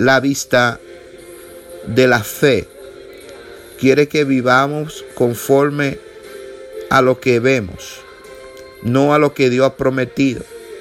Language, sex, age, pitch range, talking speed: English, male, 50-69, 130-150 Hz, 110 wpm